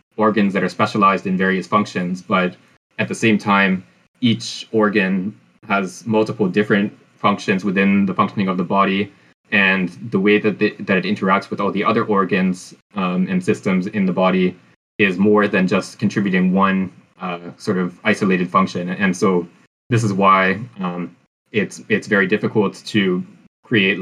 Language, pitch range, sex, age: English, 95-110 Hz, male, 20-39